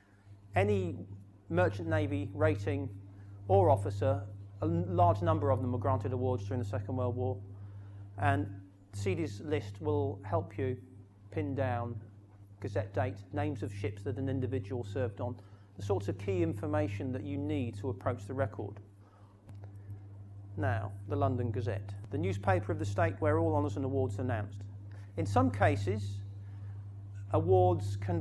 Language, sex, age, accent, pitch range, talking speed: English, male, 40-59, British, 100-105 Hz, 150 wpm